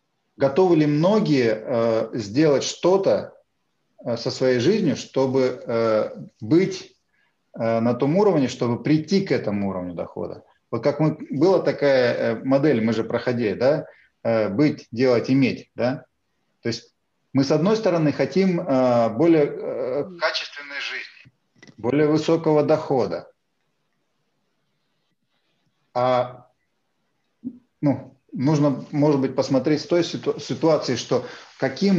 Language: Russian